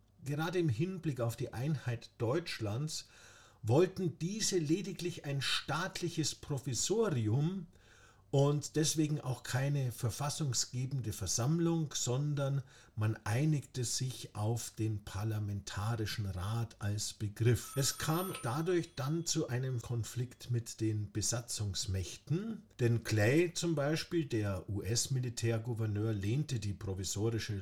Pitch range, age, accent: 105-150 Hz, 50-69, German